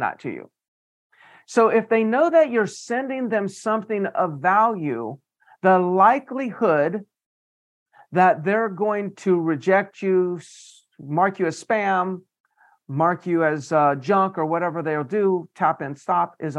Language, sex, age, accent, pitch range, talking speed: English, male, 50-69, American, 175-225 Hz, 140 wpm